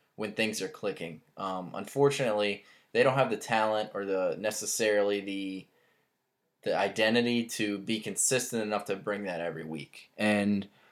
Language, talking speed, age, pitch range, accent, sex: English, 150 wpm, 10-29, 100-115 Hz, American, male